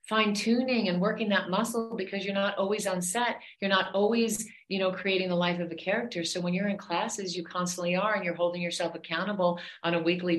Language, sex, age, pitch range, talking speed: English, female, 40-59, 165-195 Hz, 225 wpm